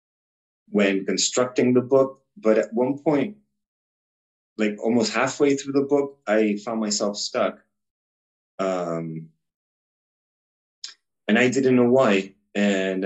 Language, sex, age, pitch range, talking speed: English, male, 30-49, 90-115 Hz, 115 wpm